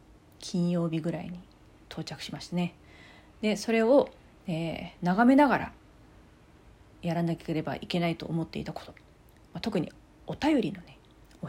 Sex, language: female, Japanese